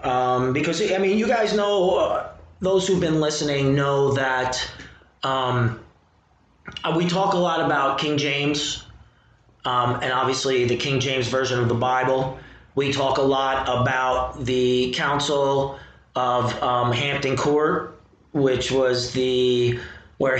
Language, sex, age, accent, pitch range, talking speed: English, male, 30-49, American, 125-150 Hz, 140 wpm